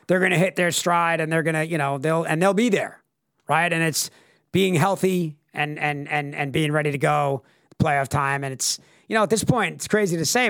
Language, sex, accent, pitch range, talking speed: English, male, American, 150-190 Hz, 245 wpm